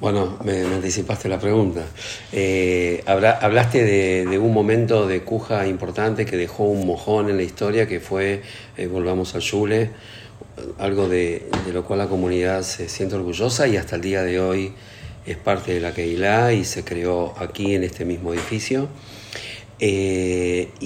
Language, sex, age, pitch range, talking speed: Spanish, male, 50-69, 95-110 Hz, 165 wpm